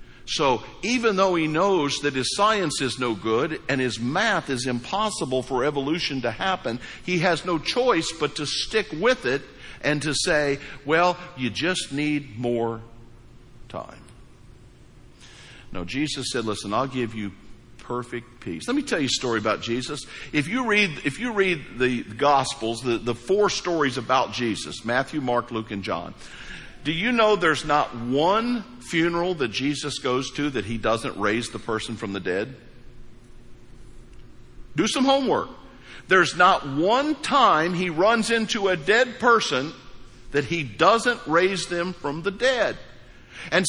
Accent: American